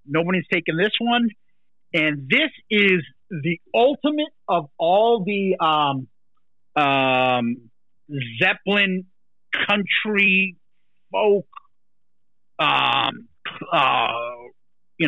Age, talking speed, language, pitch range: 50-69, 80 wpm, English, 140-185 Hz